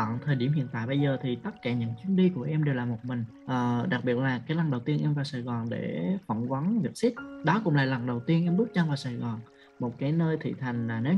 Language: Vietnamese